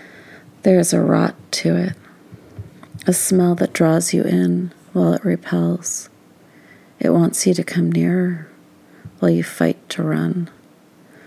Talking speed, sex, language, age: 140 wpm, female, English, 30-49